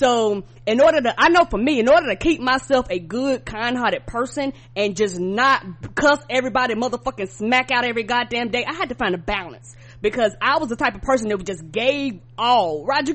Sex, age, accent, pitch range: female, 20-39, American, 230-325 Hz